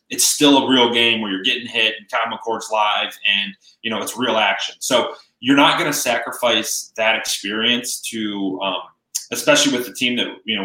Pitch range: 110-125 Hz